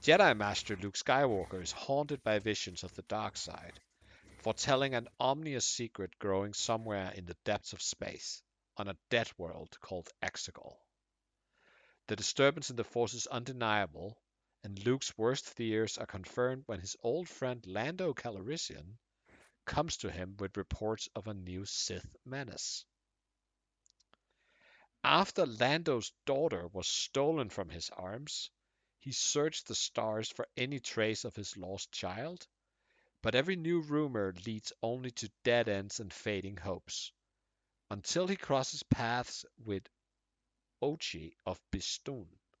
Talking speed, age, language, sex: 135 wpm, 60-79, English, male